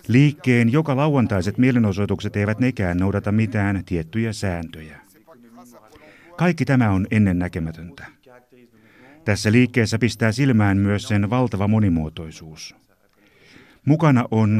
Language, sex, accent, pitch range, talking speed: Finnish, male, native, 95-120 Hz, 100 wpm